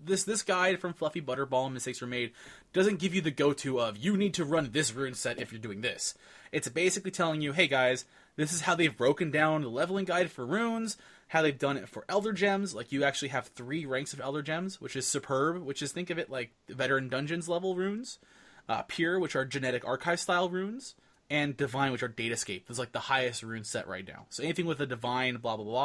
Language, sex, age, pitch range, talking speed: English, male, 20-39, 125-170 Hz, 235 wpm